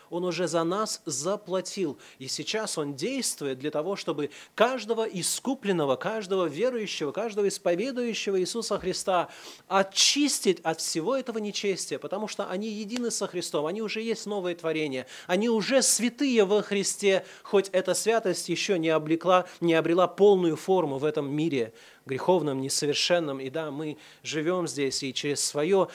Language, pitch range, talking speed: Russian, 140-190 Hz, 150 wpm